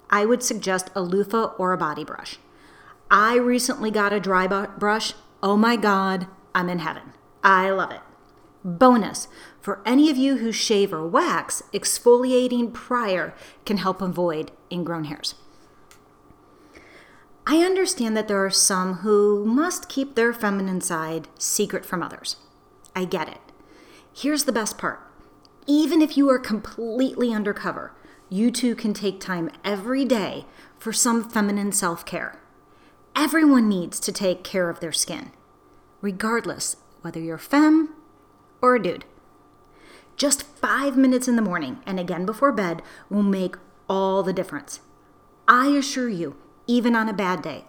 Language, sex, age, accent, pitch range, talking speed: English, female, 40-59, American, 185-250 Hz, 150 wpm